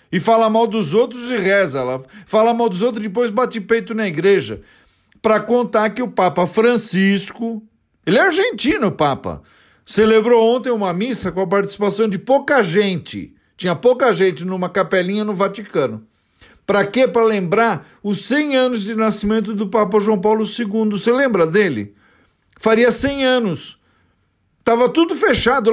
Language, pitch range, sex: Portuguese, 190-235 Hz, male